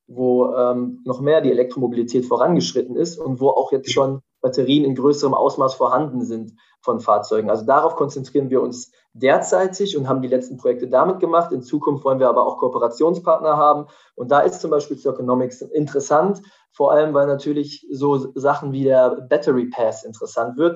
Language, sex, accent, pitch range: German, male, German, 130-170 Hz